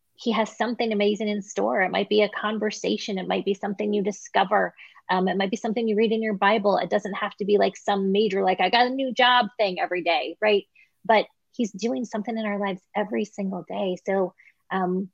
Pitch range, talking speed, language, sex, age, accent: 180-215 Hz, 225 wpm, English, female, 30-49, American